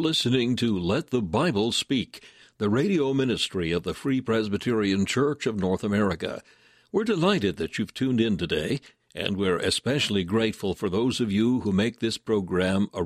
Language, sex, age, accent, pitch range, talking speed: English, male, 60-79, American, 100-125 Hz, 170 wpm